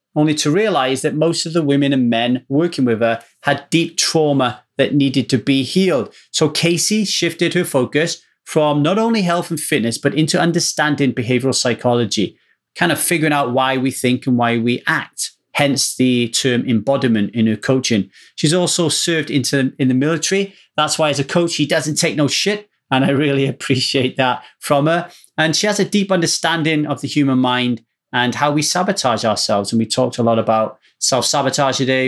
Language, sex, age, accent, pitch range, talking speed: English, male, 30-49, British, 125-165 Hz, 190 wpm